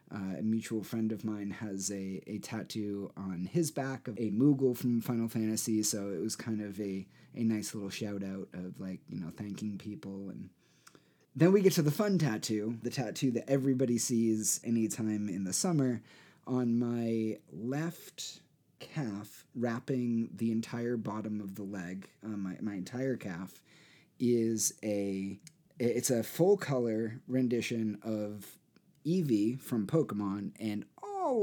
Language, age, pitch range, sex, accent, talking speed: English, 30-49, 105-140 Hz, male, American, 155 wpm